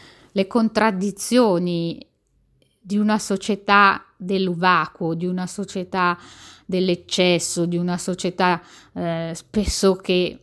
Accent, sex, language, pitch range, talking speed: native, female, Italian, 180-215 Hz, 100 wpm